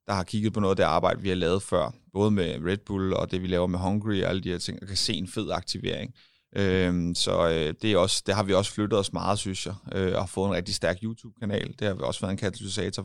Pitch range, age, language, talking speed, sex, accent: 100-120 Hz, 30-49, Danish, 275 wpm, male, native